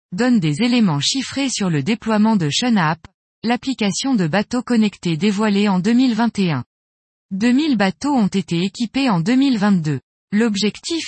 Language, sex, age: French, female, 20-39